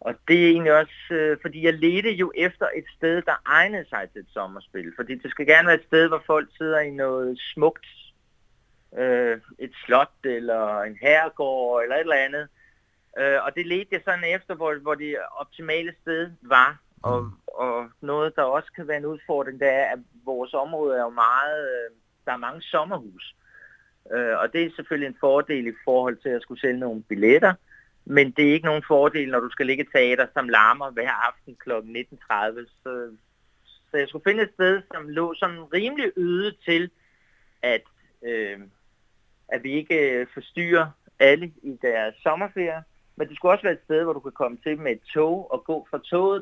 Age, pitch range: 30-49, 125-170 Hz